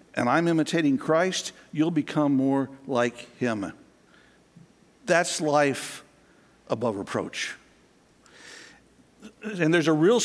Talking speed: 100 wpm